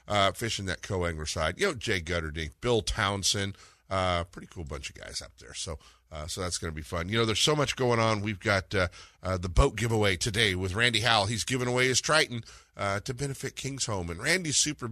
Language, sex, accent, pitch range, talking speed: English, male, American, 85-125 Hz, 235 wpm